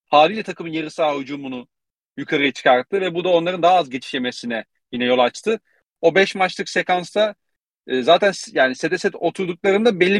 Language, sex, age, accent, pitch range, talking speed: Turkish, male, 40-59, native, 130-175 Hz, 160 wpm